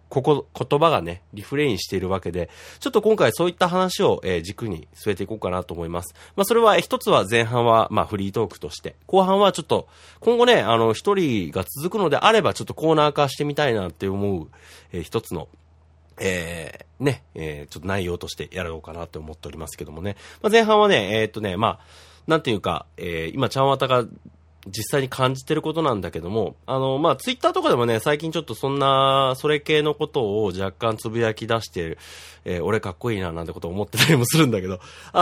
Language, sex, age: Japanese, male, 30-49